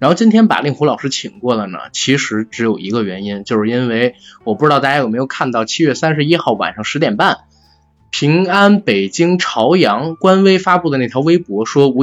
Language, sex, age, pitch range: Chinese, male, 20-39, 120-165 Hz